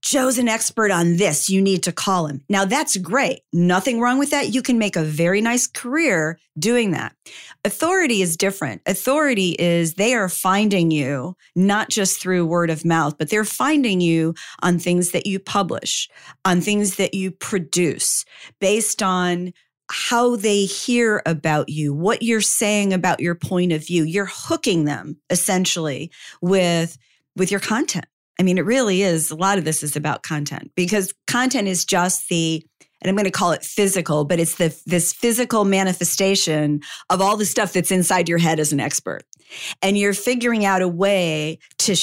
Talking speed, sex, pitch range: 180 wpm, female, 170-210 Hz